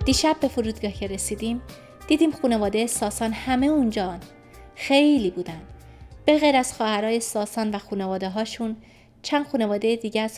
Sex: female